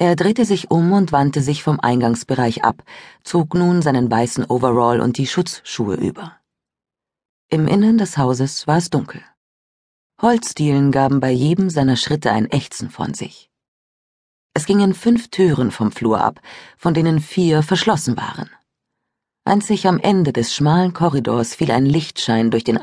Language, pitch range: German, 120-170 Hz